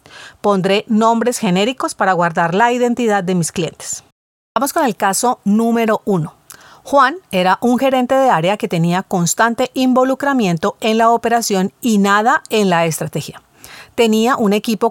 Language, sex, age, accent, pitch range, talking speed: Spanish, female, 40-59, Colombian, 180-235 Hz, 150 wpm